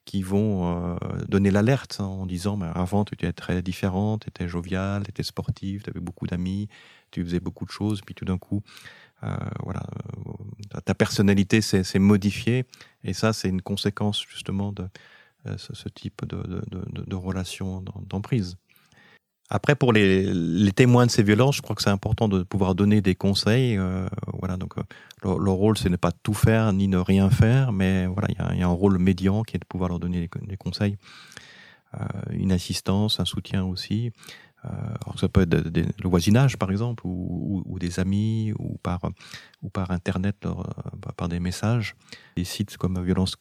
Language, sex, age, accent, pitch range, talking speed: French, male, 40-59, French, 95-110 Hz, 200 wpm